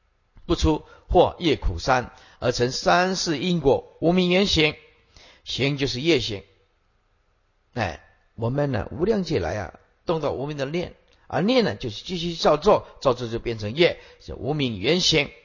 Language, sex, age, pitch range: Chinese, male, 50-69, 110-180 Hz